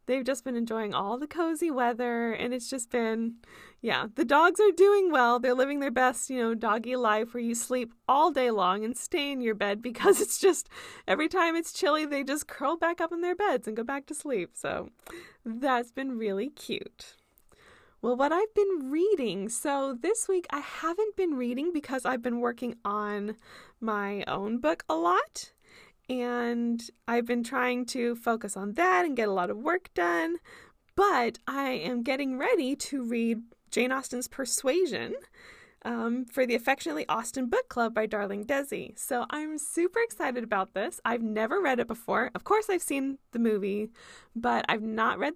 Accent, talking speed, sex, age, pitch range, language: American, 185 wpm, female, 20-39, 230-290 Hz, English